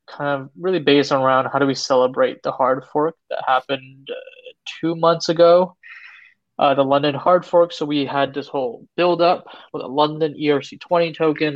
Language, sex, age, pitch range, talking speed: English, male, 20-39, 135-160 Hz, 180 wpm